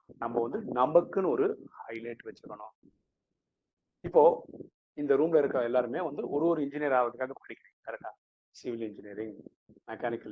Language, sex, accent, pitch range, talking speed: Tamil, male, native, 115-180 Hz, 105 wpm